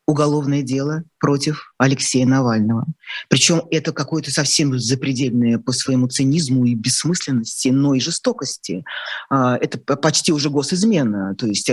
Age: 30-49